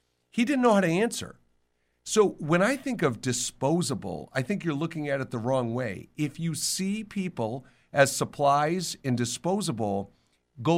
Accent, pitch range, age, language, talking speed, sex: American, 120-170 Hz, 50-69, English, 165 wpm, male